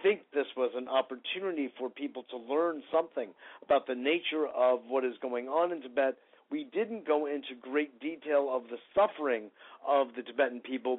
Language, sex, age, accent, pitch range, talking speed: English, male, 50-69, American, 125-145 Hz, 180 wpm